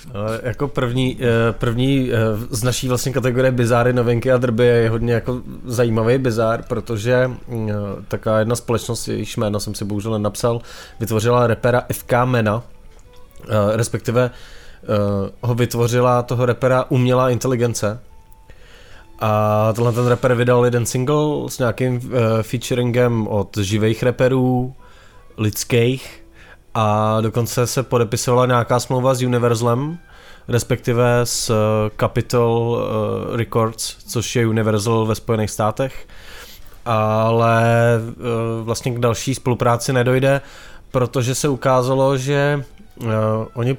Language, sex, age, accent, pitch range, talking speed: Czech, male, 20-39, native, 115-130 Hz, 110 wpm